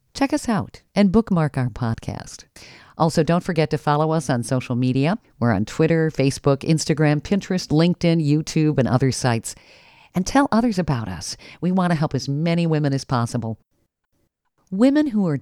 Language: English